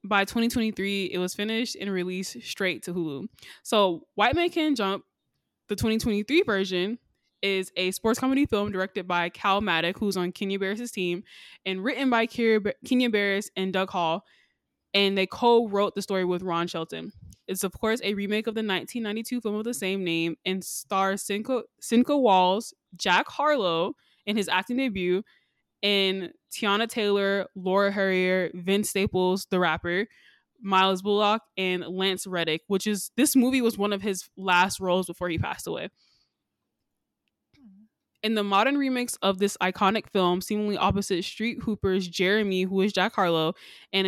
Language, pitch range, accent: English, 185-220 Hz, American